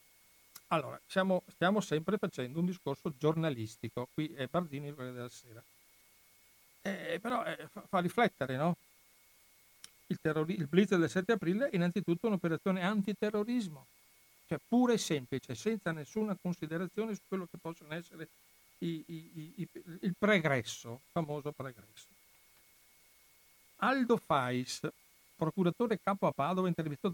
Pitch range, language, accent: 145-190 Hz, Italian, native